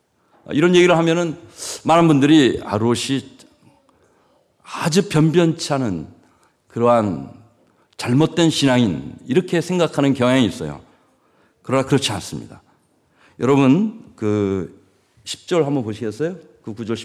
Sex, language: male, Korean